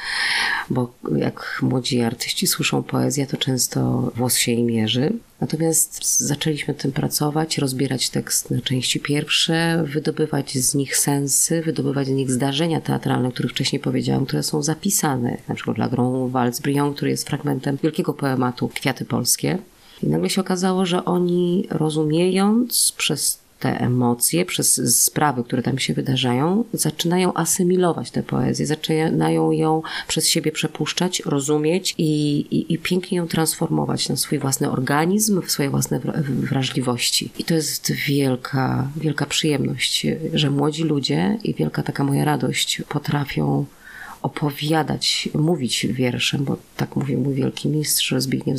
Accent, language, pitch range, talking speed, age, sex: native, Polish, 130-160 Hz, 140 wpm, 30-49, female